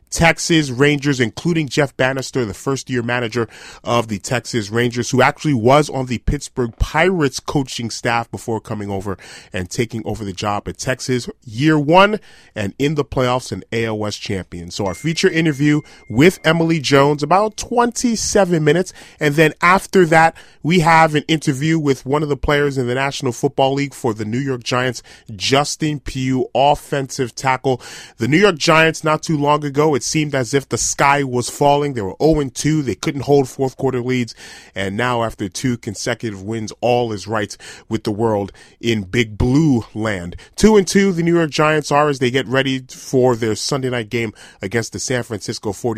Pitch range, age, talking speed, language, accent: 115-145 Hz, 30-49, 180 wpm, English, American